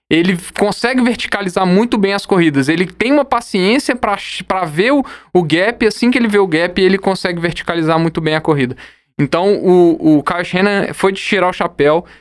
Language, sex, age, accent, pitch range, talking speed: Portuguese, male, 10-29, Brazilian, 155-210 Hz, 195 wpm